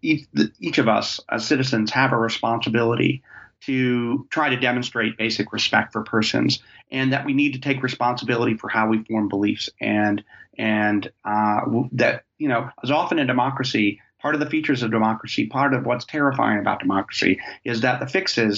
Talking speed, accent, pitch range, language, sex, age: 175 wpm, American, 110-130 Hz, English, male, 30-49